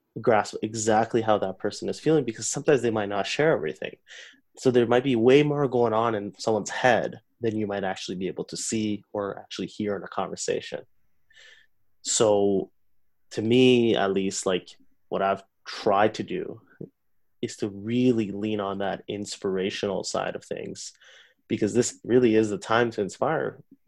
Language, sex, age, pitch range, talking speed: English, male, 20-39, 100-115 Hz, 170 wpm